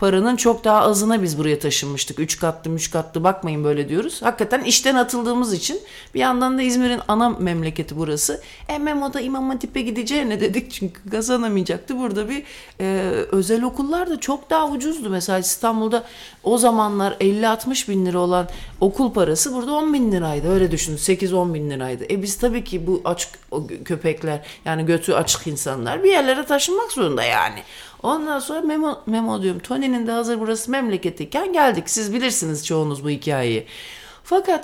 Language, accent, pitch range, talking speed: Turkish, native, 180-275 Hz, 165 wpm